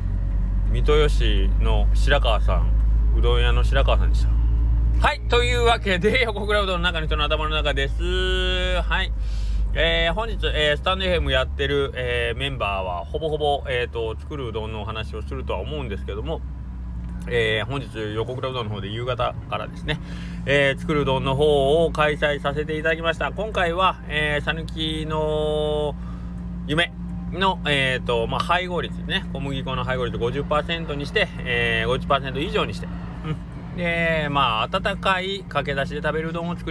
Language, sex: Japanese, male